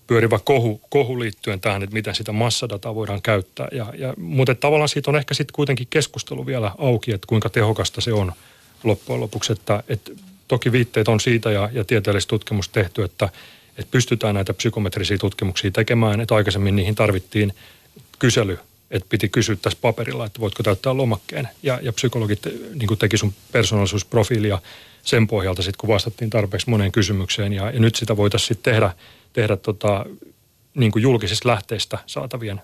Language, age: Finnish, 30-49